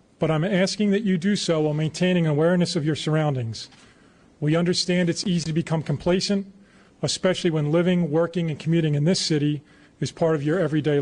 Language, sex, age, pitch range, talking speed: English, male, 40-59, 145-175 Hz, 185 wpm